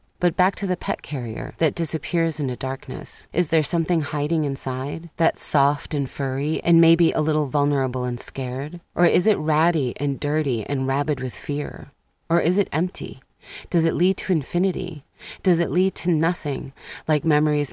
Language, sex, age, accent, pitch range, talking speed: English, female, 30-49, American, 135-170 Hz, 180 wpm